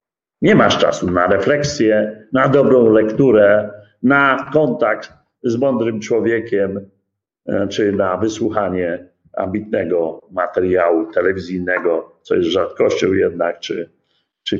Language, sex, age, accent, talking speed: Polish, male, 50-69, native, 105 wpm